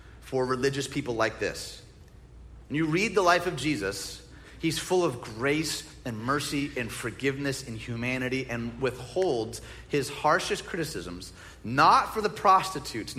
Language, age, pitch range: English, 30-49, 125-200 Hz